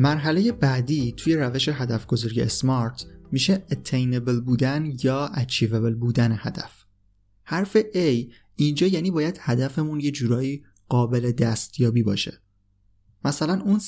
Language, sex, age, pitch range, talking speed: Persian, male, 20-39, 120-145 Hz, 115 wpm